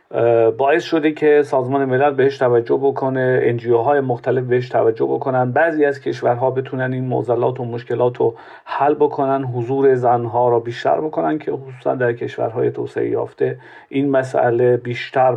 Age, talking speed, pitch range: 40-59, 145 wpm, 120-145 Hz